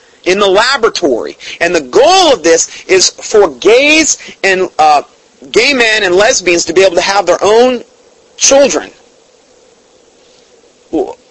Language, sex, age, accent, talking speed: English, male, 40-59, American, 140 wpm